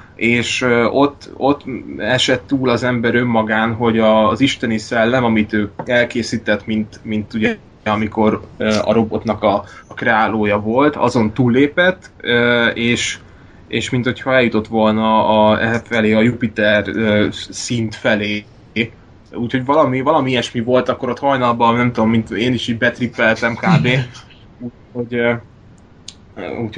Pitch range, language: 105-120 Hz, Hungarian